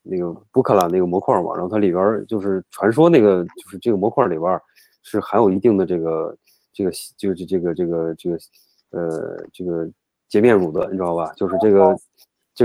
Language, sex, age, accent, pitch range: Chinese, male, 30-49, native, 90-110 Hz